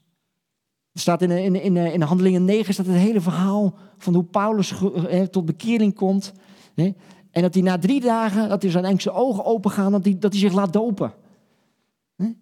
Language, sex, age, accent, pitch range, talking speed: Dutch, male, 50-69, Dutch, 175-200 Hz, 190 wpm